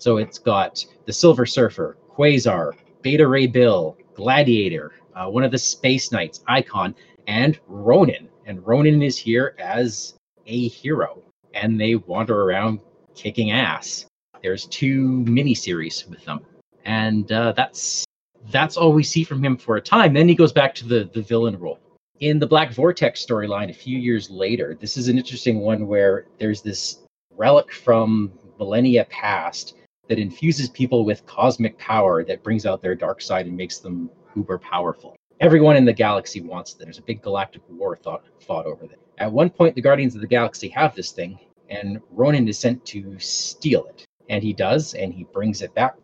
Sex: male